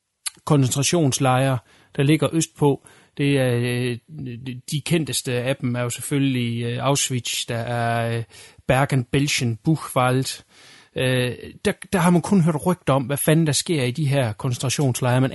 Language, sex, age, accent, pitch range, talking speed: Danish, male, 30-49, native, 130-165 Hz, 135 wpm